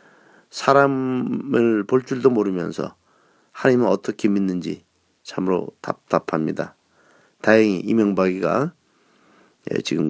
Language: Korean